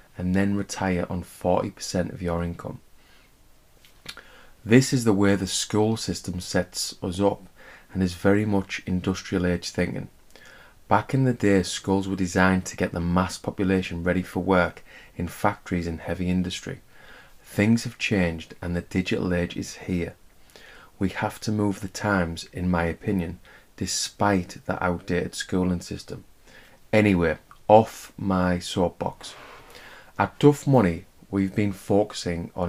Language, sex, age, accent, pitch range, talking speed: English, male, 20-39, British, 90-100 Hz, 145 wpm